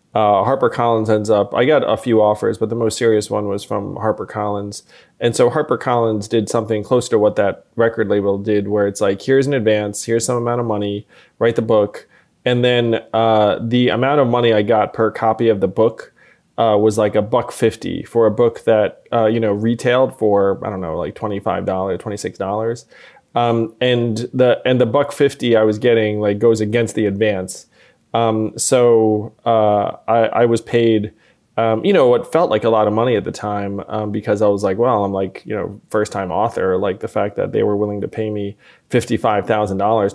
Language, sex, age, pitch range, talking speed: English, male, 20-39, 105-120 Hz, 210 wpm